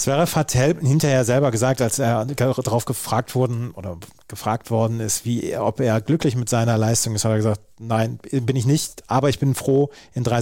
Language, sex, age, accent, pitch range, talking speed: German, male, 30-49, German, 115-130 Hz, 200 wpm